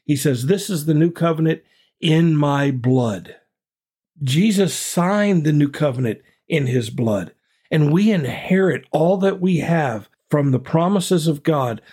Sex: male